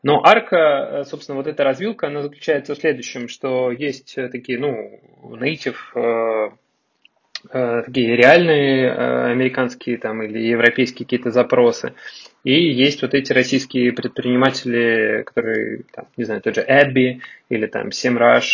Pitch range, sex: 125-150 Hz, male